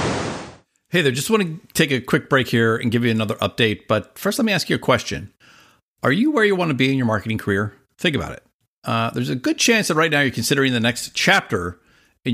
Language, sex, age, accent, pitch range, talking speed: English, male, 50-69, American, 115-145 Hz, 250 wpm